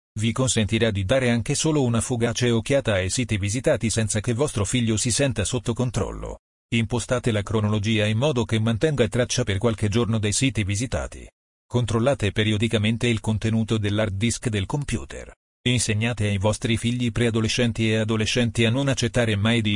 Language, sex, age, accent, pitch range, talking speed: Italian, male, 40-59, native, 110-125 Hz, 165 wpm